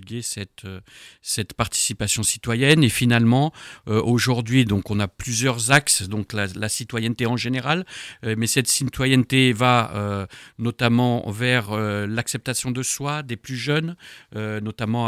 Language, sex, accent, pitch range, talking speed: French, male, French, 105-125 Hz, 145 wpm